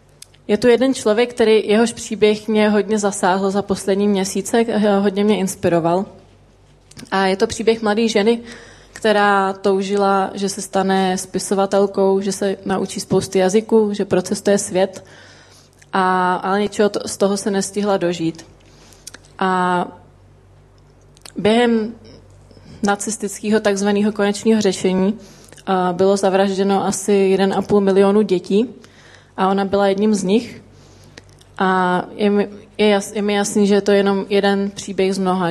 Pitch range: 190-210 Hz